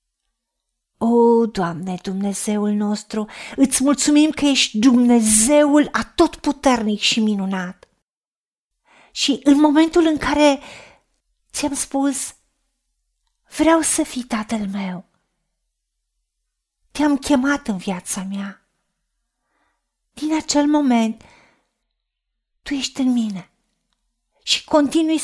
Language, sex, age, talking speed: Romanian, female, 40-59, 90 wpm